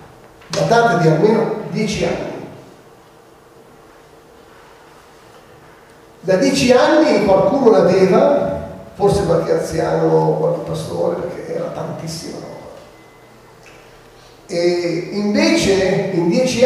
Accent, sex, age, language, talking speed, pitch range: native, male, 40-59, Italian, 85 wpm, 165-220 Hz